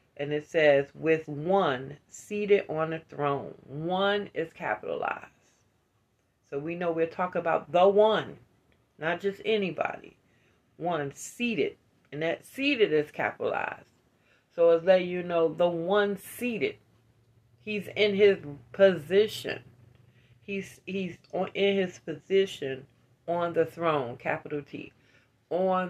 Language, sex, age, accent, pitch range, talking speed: English, female, 40-59, American, 135-185 Hz, 125 wpm